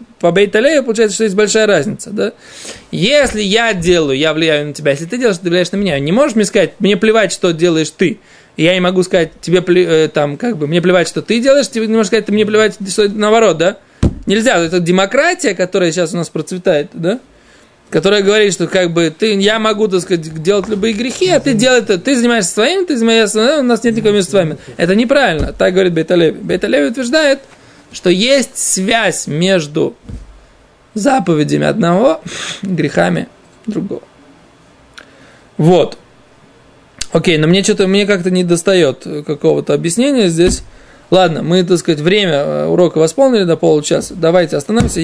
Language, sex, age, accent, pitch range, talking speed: Russian, male, 20-39, native, 170-220 Hz, 170 wpm